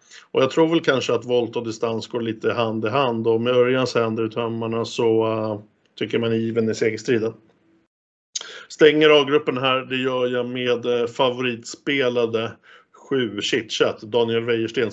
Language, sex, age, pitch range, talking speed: Swedish, male, 50-69, 115-150 Hz, 155 wpm